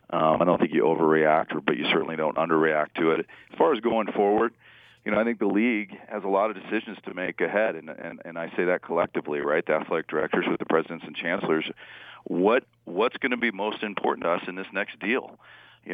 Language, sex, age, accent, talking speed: English, male, 40-59, American, 235 wpm